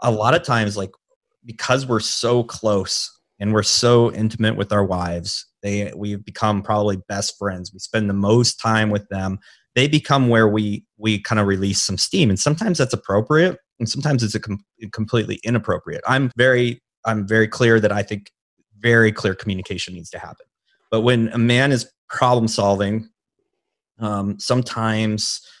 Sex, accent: male, American